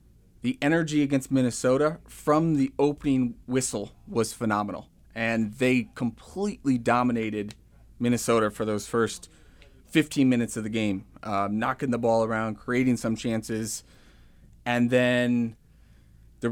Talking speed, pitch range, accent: 125 wpm, 115-145 Hz, American